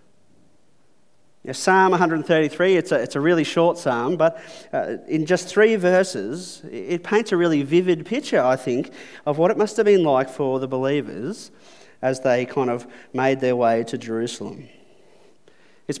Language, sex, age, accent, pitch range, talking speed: English, male, 30-49, Australian, 135-170 Hz, 170 wpm